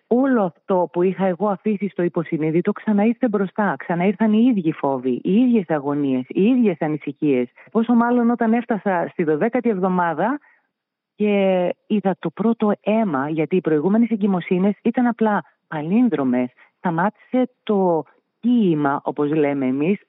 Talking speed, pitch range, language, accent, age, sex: 135 wpm, 165-235 Hz, Greek, native, 40-59, female